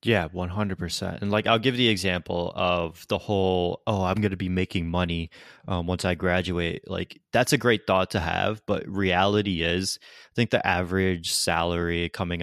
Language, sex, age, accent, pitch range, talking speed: English, male, 20-39, American, 85-100 Hz, 200 wpm